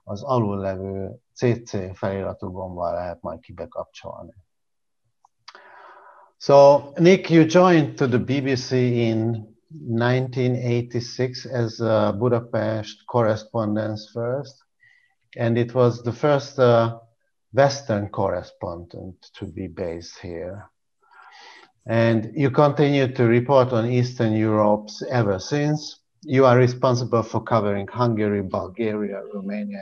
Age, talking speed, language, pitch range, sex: 50-69, 100 wpm, Hungarian, 105-125 Hz, male